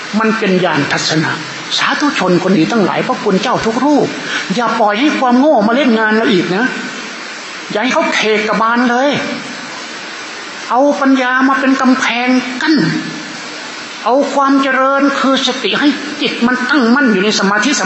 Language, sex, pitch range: Thai, male, 215-290 Hz